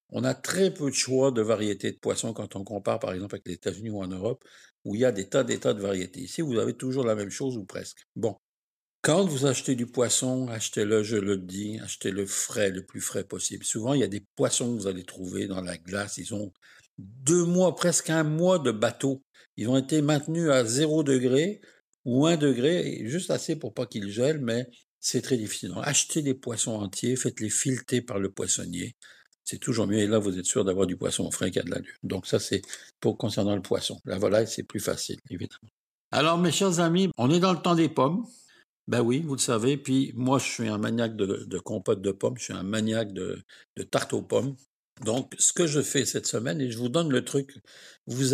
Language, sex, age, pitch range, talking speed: French, male, 60-79, 105-140 Hz, 240 wpm